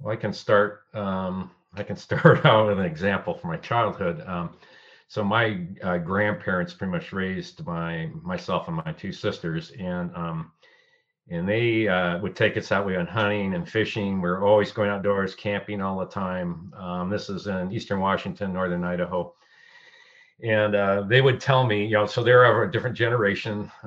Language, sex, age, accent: English, male, 50-69, American